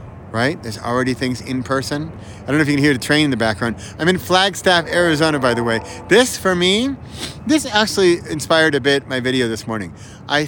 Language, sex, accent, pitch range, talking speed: English, male, American, 110-140 Hz, 220 wpm